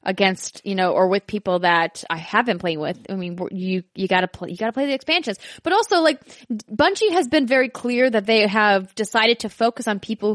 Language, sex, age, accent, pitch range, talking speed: English, female, 20-39, American, 200-255 Hz, 225 wpm